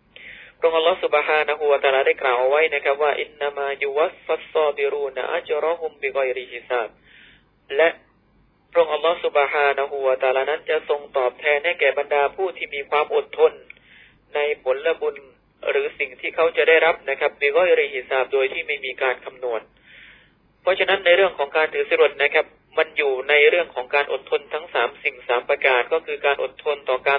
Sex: male